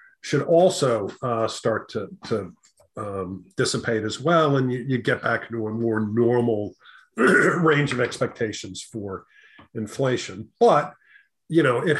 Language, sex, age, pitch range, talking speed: English, male, 50-69, 115-145 Hz, 130 wpm